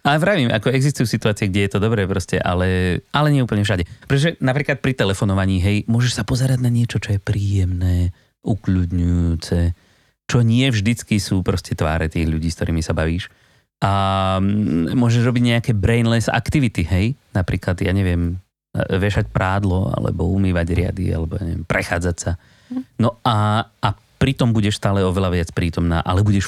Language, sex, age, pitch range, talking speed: Slovak, male, 30-49, 95-125 Hz, 160 wpm